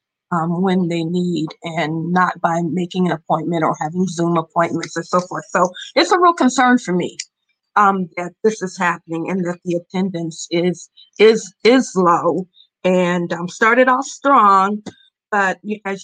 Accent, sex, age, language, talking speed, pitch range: American, female, 50-69, English, 165 wpm, 180-210 Hz